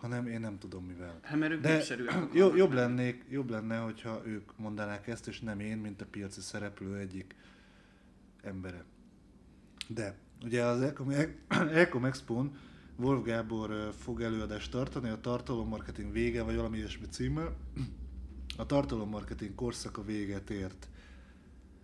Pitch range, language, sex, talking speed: 100-120 Hz, Hungarian, male, 125 wpm